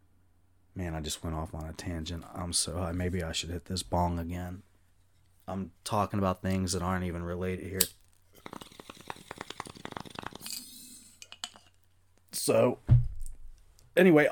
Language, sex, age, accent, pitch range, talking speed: English, male, 30-49, American, 85-105 Hz, 115 wpm